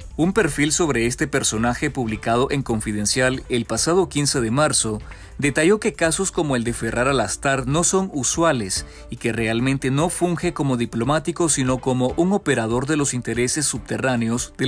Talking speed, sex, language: 165 wpm, male, Spanish